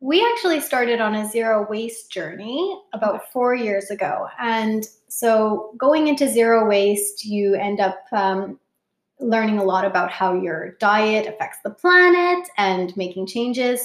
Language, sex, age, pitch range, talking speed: English, female, 20-39, 190-235 Hz, 150 wpm